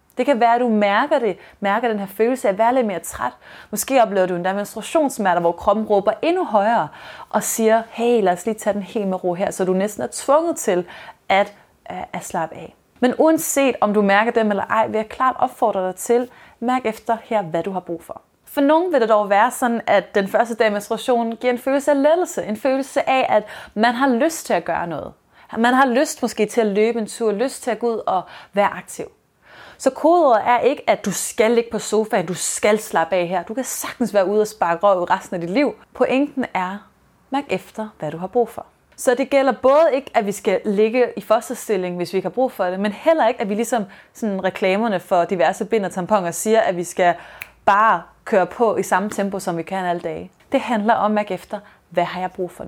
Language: Danish